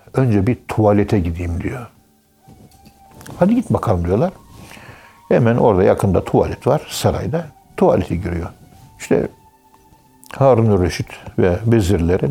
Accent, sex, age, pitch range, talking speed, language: native, male, 60-79, 90-120 Hz, 105 wpm, Turkish